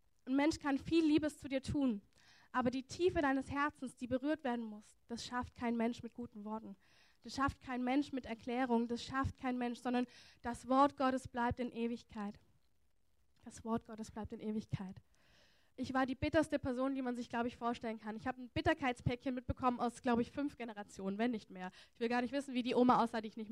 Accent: German